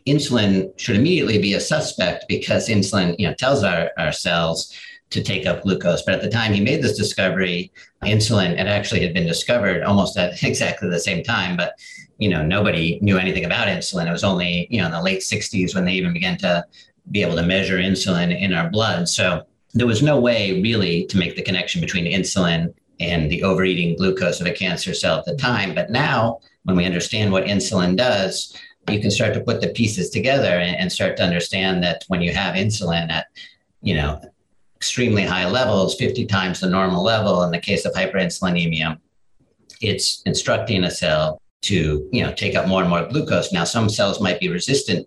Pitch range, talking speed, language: 85-105 Hz, 200 wpm, English